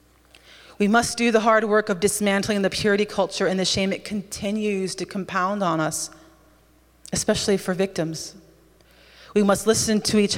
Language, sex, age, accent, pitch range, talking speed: English, female, 30-49, American, 160-200 Hz, 160 wpm